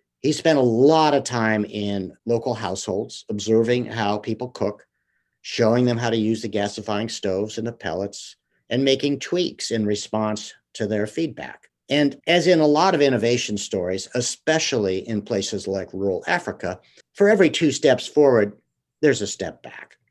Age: 50-69